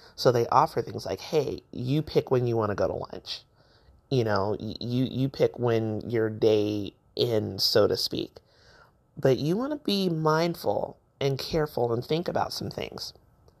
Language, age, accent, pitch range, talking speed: English, 30-49, American, 120-155 Hz, 175 wpm